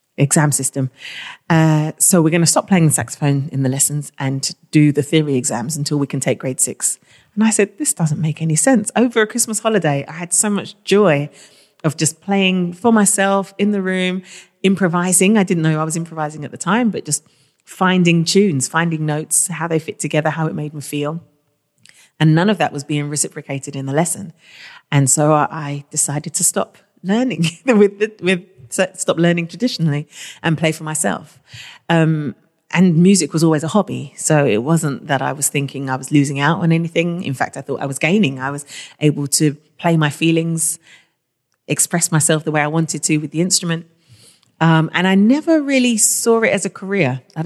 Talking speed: 200 wpm